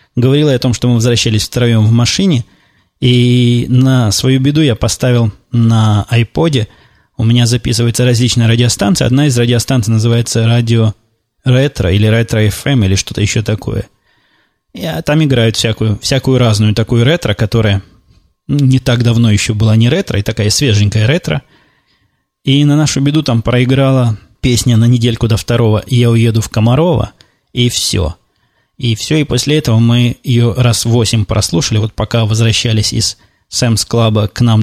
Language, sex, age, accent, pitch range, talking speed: Russian, male, 20-39, native, 110-125 Hz, 160 wpm